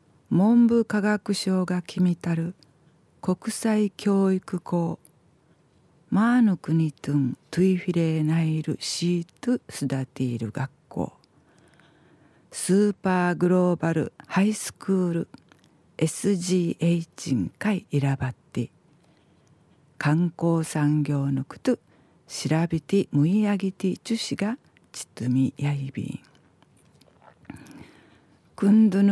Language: Japanese